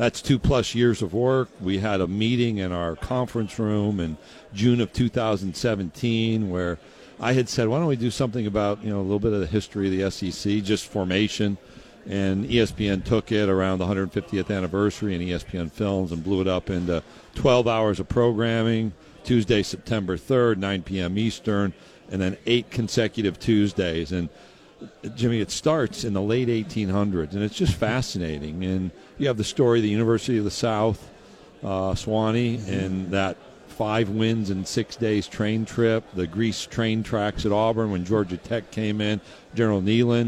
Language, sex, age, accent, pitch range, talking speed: English, male, 60-79, American, 95-115 Hz, 175 wpm